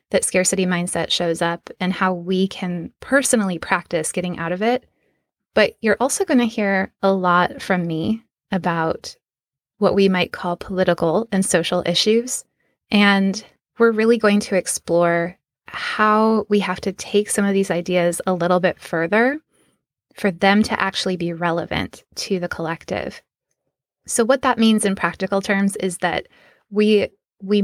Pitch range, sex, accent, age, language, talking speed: 180-210 Hz, female, American, 20-39, English, 160 wpm